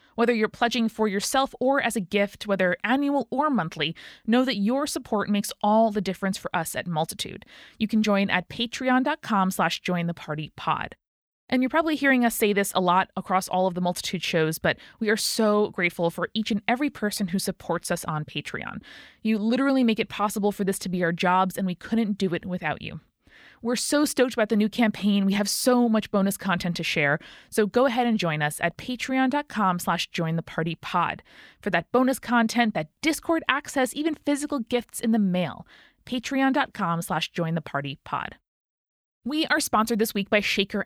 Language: English